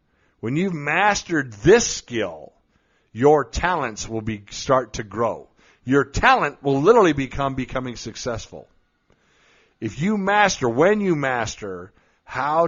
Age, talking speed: 50-69, 125 wpm